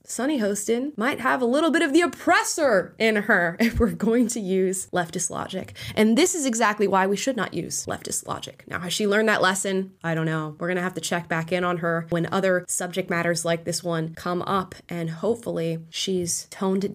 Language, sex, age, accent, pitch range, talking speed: English, female, 20-39, American, 190-260 Hz, 220 wpm